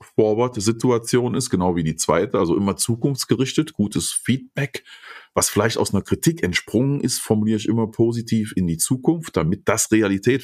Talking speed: 165 wpm